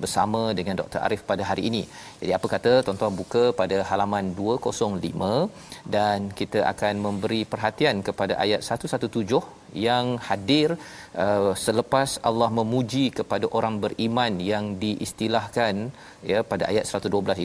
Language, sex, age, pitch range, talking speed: Malayalam, male, 40-59, 95-115 Hz, 125 wpm